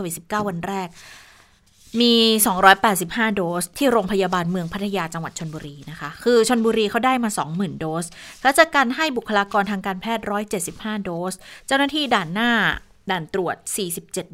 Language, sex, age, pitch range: Thai, female, 20-39, 175-220 Hz